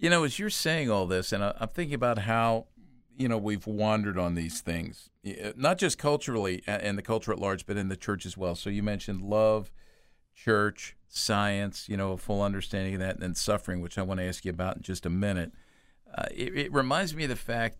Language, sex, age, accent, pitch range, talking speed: English, male, 50-69, American, 90-110 Hz, 230 wpm